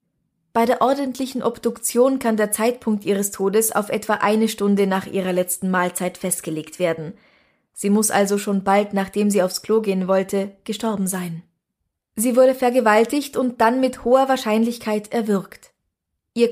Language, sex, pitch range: German, female, 200-235 Hz